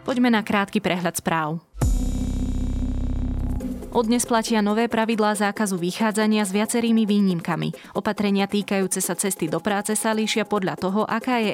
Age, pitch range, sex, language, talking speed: 20-39, 180-215 Hz, female, Slovak, 135 wpm